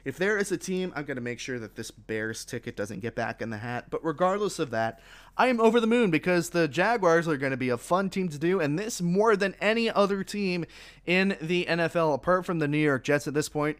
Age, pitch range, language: 20-39, 125-170 Hz, English